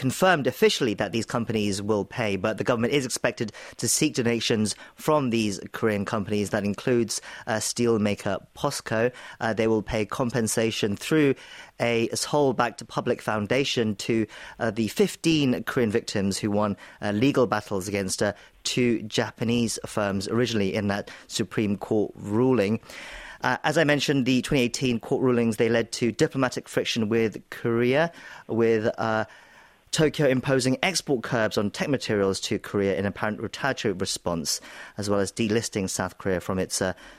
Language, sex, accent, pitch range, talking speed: English, male, British, 105-135 Hz, 155 wpm